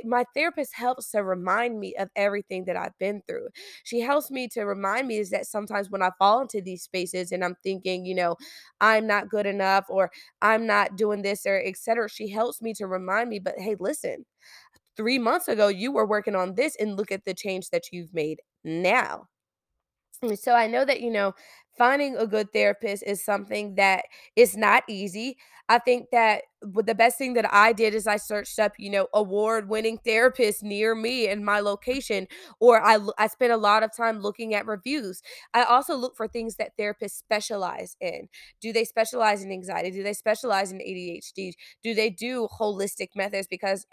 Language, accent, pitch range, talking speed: English, American, 195-230 Hz, 195 wpm